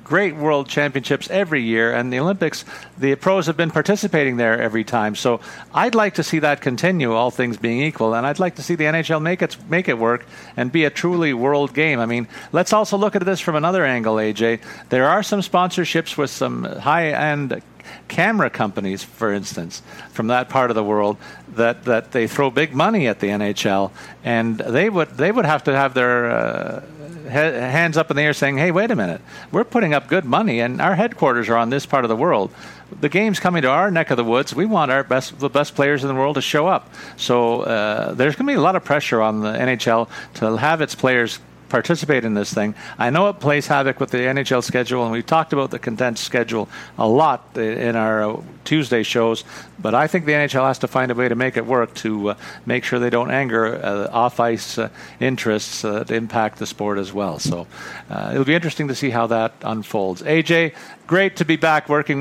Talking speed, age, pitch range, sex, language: 220 wpm, 50-69, 115-155 Hz, male, English